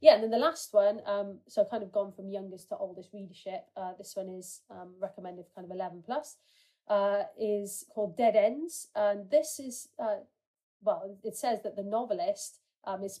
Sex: female